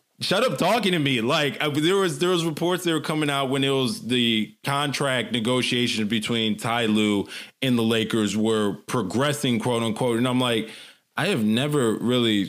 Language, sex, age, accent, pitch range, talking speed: English, male, 20-39, American, 110-140 Hz, 185 wpm